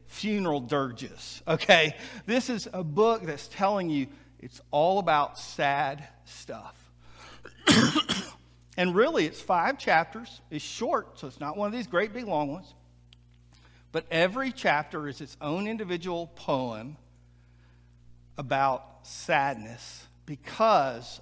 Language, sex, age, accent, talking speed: English, male, 50-69, American, 120 wpm